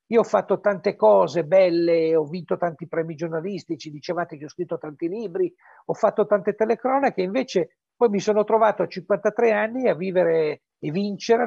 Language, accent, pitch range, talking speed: Italian, native, 175-240 Hz, 175 wpm